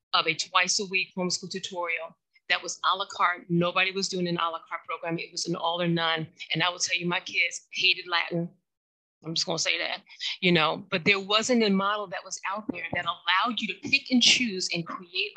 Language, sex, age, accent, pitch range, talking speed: English, female, 40-59, American, 175-220 Hz, 235 wpm